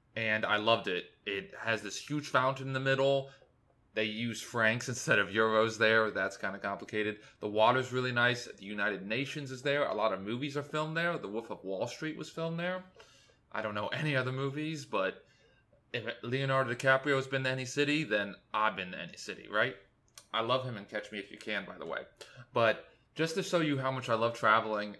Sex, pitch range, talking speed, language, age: male, 110-135 Hz, 220 wpm, English, 20-39